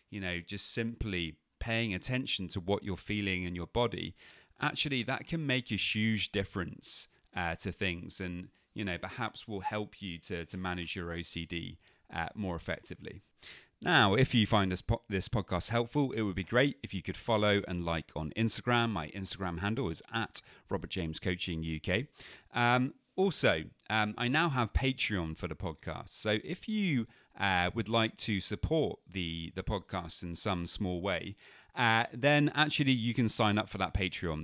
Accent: British